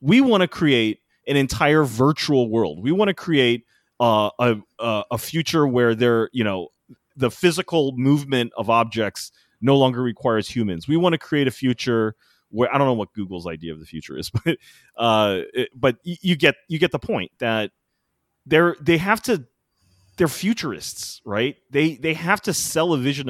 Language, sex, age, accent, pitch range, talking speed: English, male, 30-49, American, 105-150 Hz, 185 wpm